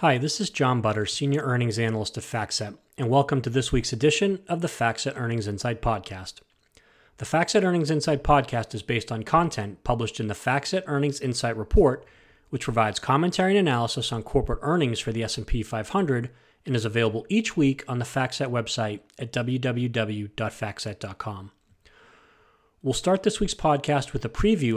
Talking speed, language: 165 wpm, English